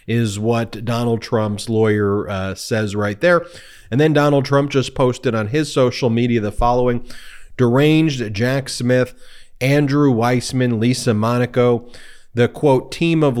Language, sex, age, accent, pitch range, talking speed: English, male, 30-49, American, 115-140 Hz, 145 wpm